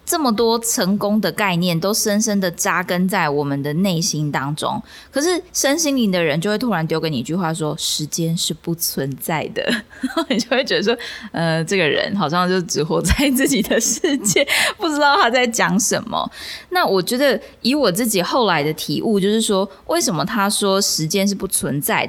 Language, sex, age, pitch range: Chinese, female, 20-39, 170-230 Hz